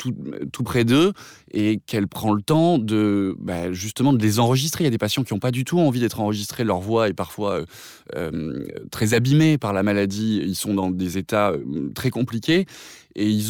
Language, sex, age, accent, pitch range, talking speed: French, male, 20-39, French, 105-135 Hz, 210 wpm